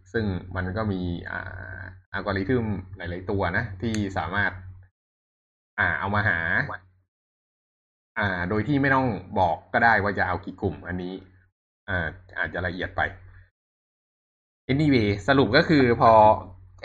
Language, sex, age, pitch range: Thai, male, 20-39, 90-105 Hz